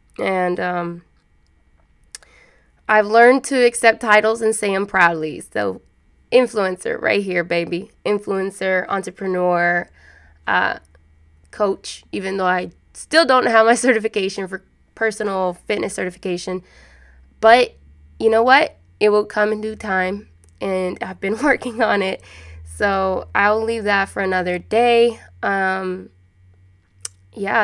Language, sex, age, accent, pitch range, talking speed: English, female, 20-39, American, 180-230 Hz, 125 wpm